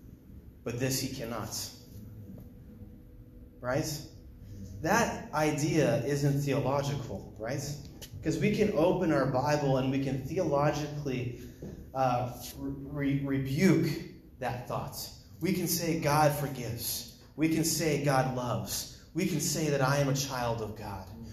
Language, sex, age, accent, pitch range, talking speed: English, male, 30-49, American, 120-150 Hz, 125 wpm